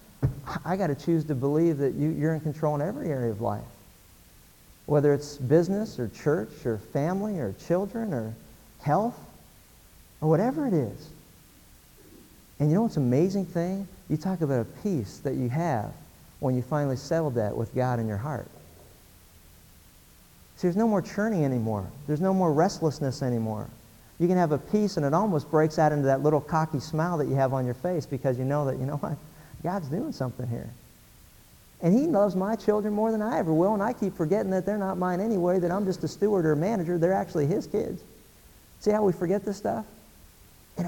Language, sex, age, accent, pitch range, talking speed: English, male, 50-69, American, 130-180 Hz, 195 wpm